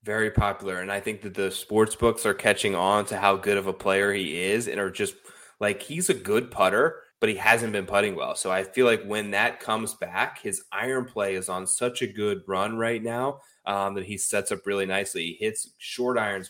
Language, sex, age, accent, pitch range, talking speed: English, male, 20-39, American, 100-125 Hz, 235 wpm